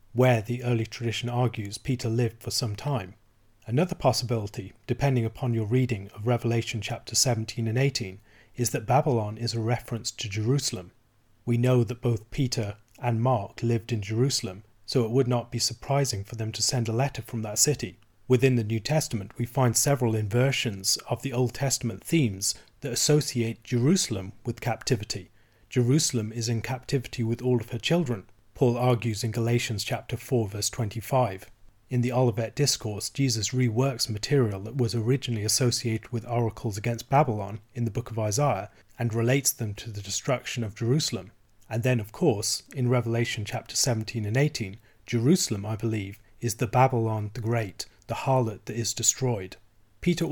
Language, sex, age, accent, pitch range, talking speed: English, male, 30-49, British, 110-125 Hz, 170 wpm